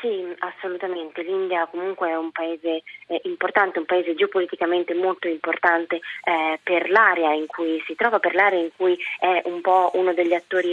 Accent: native